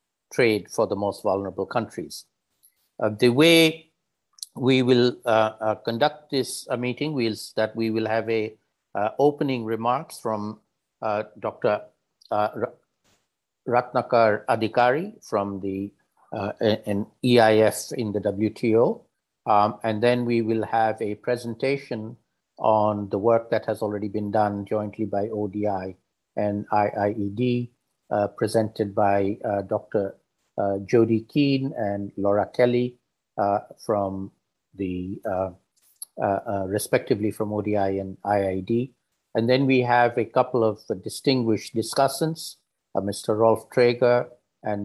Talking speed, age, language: 130 wpm, 50-69, English